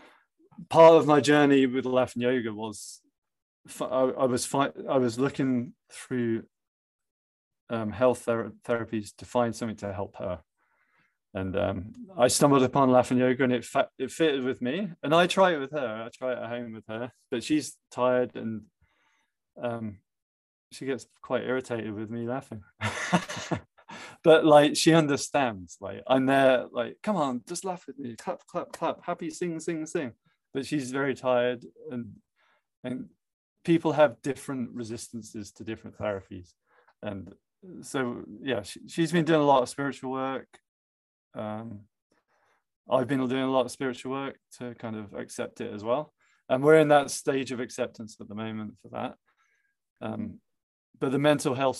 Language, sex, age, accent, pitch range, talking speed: English, male, 20-39, British, 110-140 Hz, 165 wpm